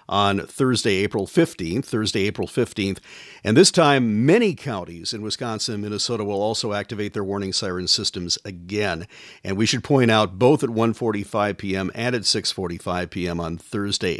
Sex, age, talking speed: male, 50-69, 175 wpm